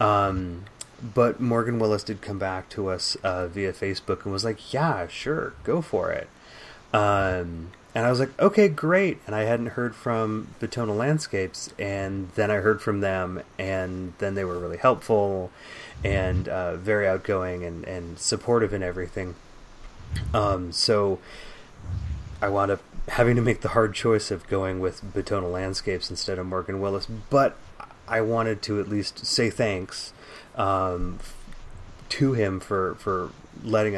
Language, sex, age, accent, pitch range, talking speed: English, male, 30-49, American, 90-110 Hz, 155 wpm